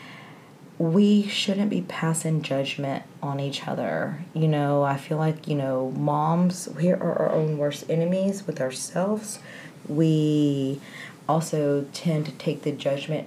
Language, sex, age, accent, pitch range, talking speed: English, female, 30-49, American, 145-185 Hz, 140 wpm